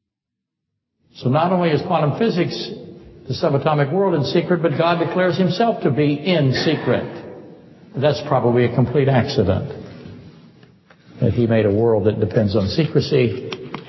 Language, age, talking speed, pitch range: English, 60-79, 145 wpm, 110-150 Hz